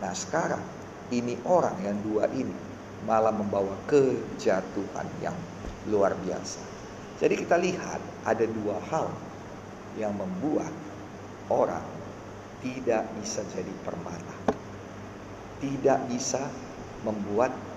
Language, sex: Indonesian, male